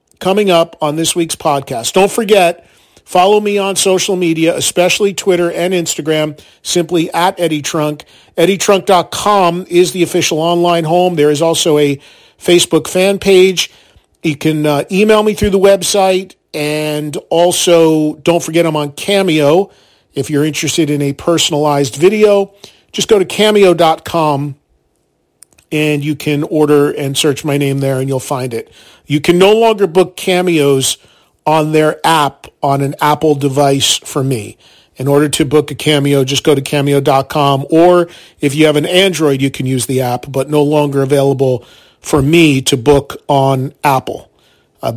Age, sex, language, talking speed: 40-59, male, English, 160 wpm